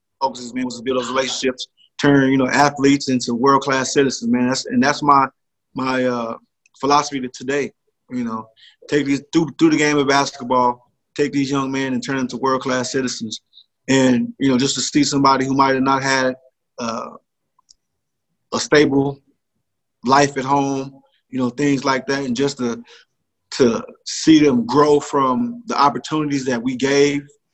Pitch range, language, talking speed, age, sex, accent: 125-140 Hz, English, 180 wpm, 20-39, male, American